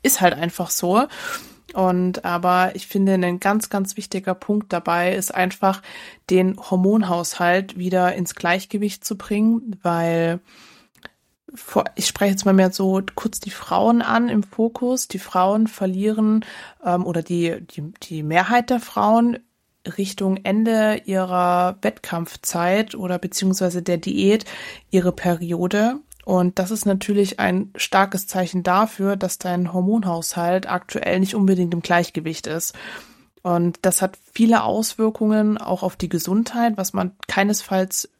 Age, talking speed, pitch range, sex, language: 20-39, 135 wpm, 180-210 Hz, female, German